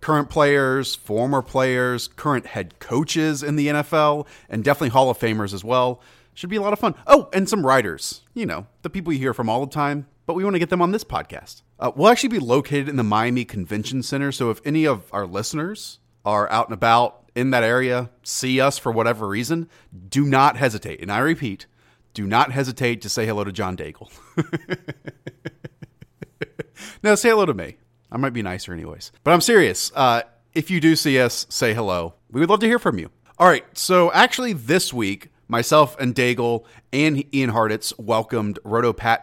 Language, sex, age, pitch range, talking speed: English, male, 30-49, 115-155 Hz, 200 wpm